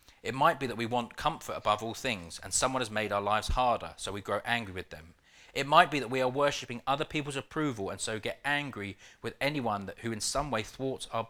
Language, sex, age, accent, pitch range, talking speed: English, male, 30-49, British, 100-135 Hz, 240 wpm